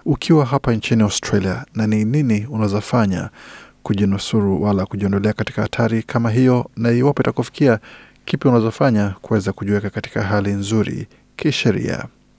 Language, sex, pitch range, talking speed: Swahili, male, 105-130 Hz, 125 wpm